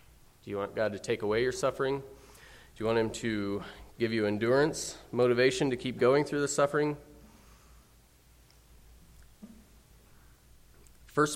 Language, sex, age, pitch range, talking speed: English, male, 30-49, 95-125 Hz, 130 wpm